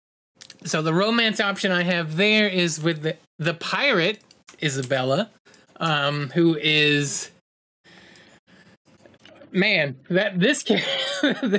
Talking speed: 100 wpm